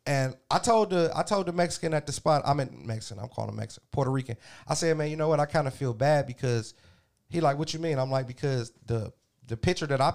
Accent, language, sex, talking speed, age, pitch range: American, English, male, 265 wpm, 30-49, 130-160 Hz